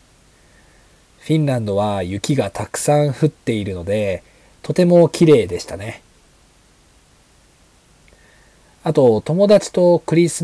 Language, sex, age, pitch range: Japanese, male, 40-59, 100-150 Hz